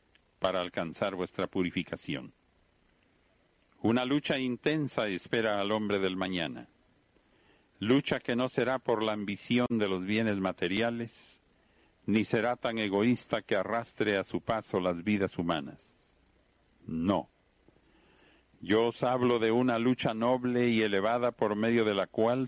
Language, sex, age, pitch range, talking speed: Spanish, male, 50-69, 100-125 Hz, 135 wpm